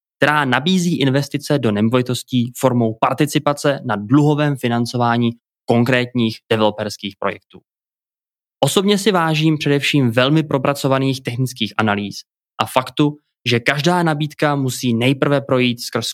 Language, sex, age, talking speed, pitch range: Czech, male, 20-39, 110 wpm, 120-145 Hz